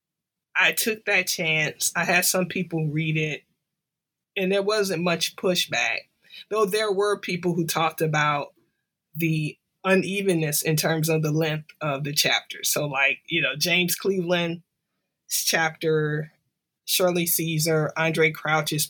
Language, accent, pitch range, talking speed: English, American, 155-185 Hz, 140 wpm